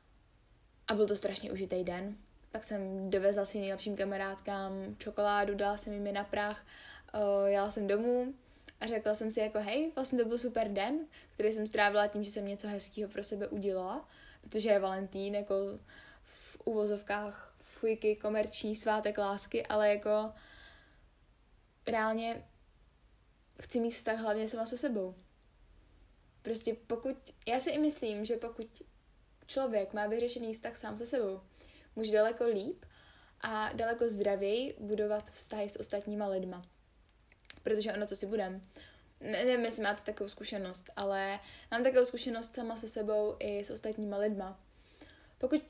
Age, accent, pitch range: 10-29, native, 200-225 Hz